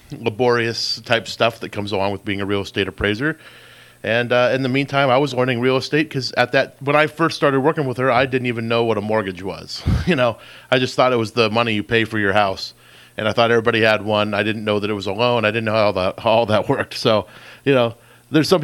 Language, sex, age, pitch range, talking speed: English, male, 30-49, 105-130 Hz, 265 wpm